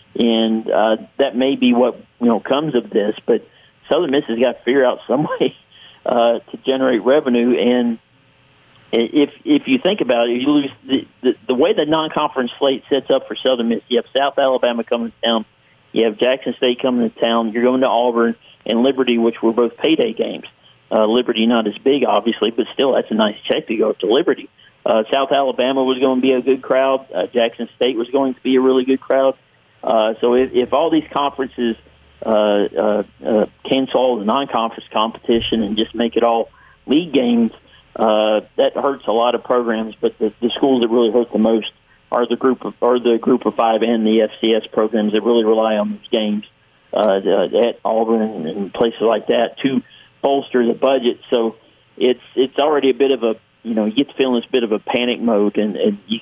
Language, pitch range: English, 110-130 Hz